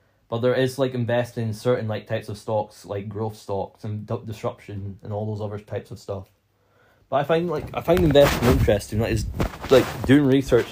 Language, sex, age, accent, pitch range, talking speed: English, male, 10-29, British, 105-130 Hz, 205 wpm